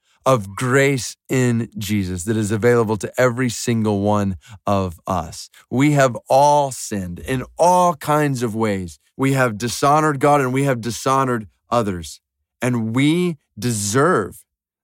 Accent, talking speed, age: American, 140 wpm, 30-49